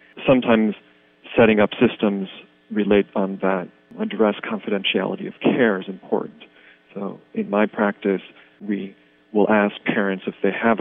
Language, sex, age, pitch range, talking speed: English, male, 40-59, 90-110 Hz, 135 wpm